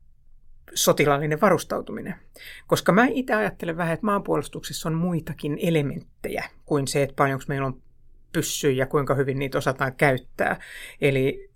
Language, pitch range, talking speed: Finnish, 145-170 Hz, 135 wpm